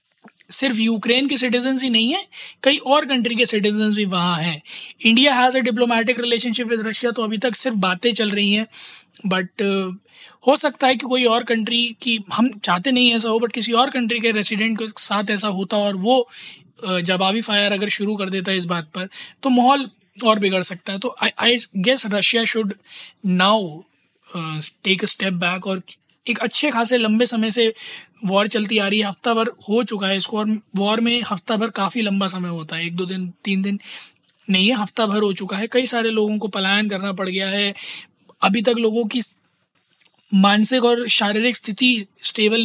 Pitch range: 195-235 Hz